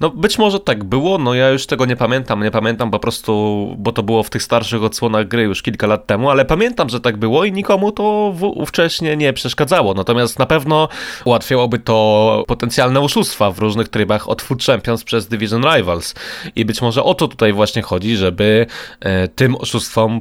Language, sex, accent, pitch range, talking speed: Polish, male, native, 110-140 Hz, 195 wpm